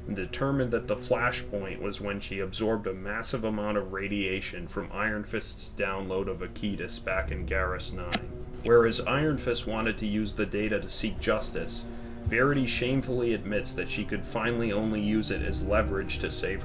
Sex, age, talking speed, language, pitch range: male, 30-49, 175 wpm, English, 100-120 Hz